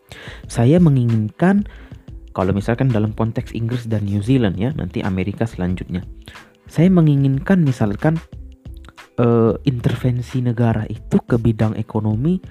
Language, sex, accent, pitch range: Indonesian, male, native, 115-160 Hz